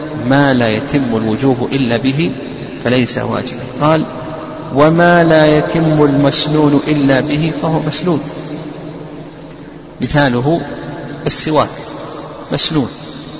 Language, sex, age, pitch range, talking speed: Arabic, male, 50-69, 125-150 Hz, 90 wpm